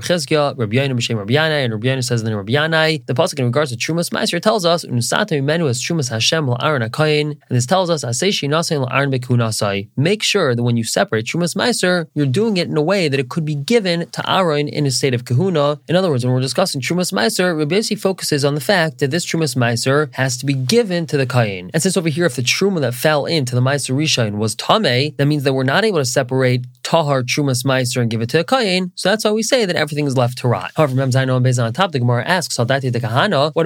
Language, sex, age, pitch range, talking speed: English, male, 20-39, 125-165 Hz, 225 wpm